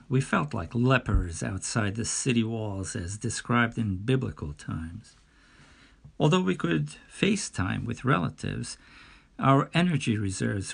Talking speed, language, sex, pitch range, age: 125 wpm, English, male, 110-125 Hz, 50-69